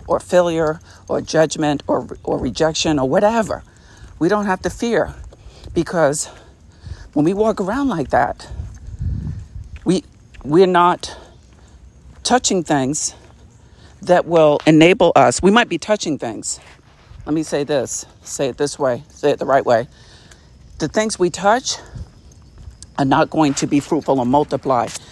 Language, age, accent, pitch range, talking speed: English, 50-69, American, 120-170 Hz, 145 wpm